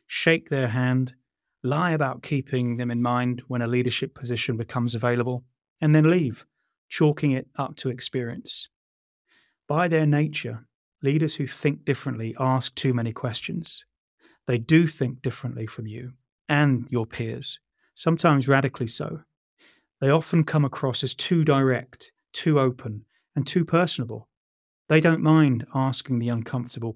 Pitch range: 120-145 Hz